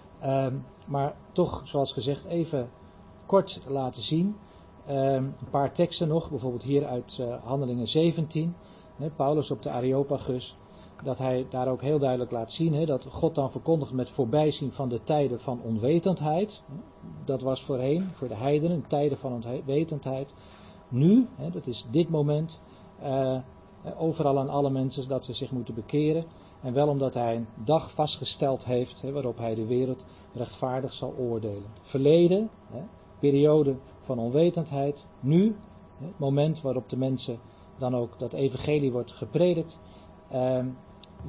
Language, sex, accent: Dutch, male, Dutch